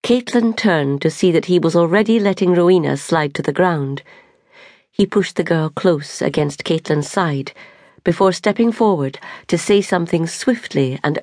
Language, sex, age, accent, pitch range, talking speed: English, female, 40-59, British, 145-190 Hz, 160 wpm